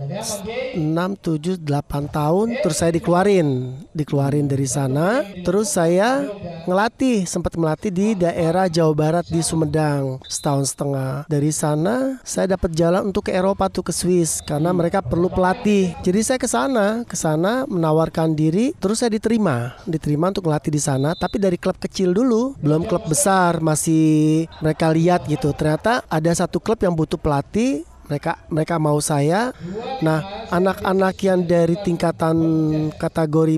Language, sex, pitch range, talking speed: Indonesian, male, 155-190 Hz, 145 wpm